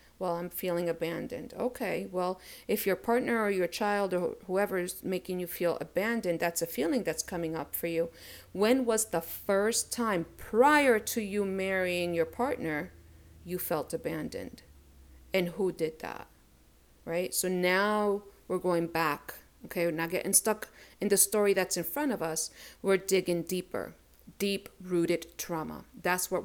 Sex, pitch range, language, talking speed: female, 165-200 Hz, English, 165 wpm